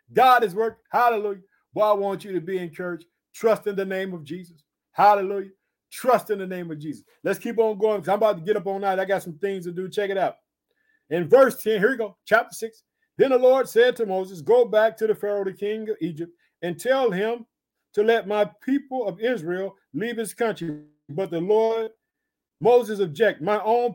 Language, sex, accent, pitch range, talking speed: English, male, American, 170-225 Hz, 220 wpm